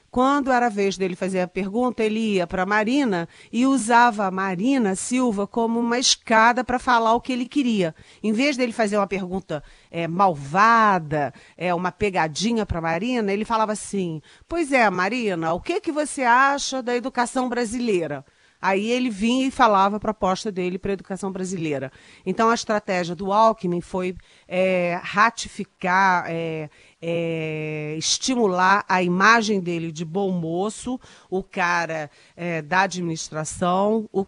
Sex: female